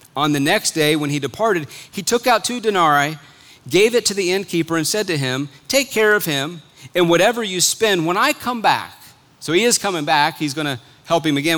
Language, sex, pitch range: English, male, 145-195 Hz